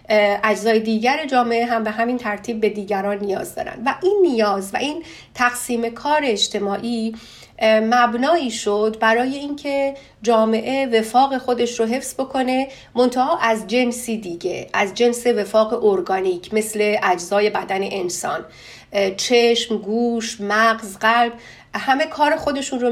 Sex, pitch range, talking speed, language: female, 210-250 Hz, 130 wpm, Persian